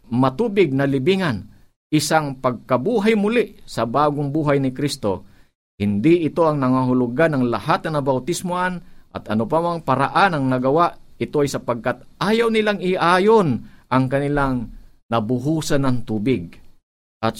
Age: 50-69